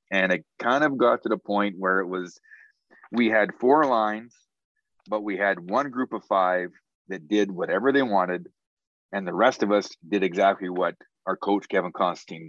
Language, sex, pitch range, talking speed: English, male, 100-115 Hz, 190 wpm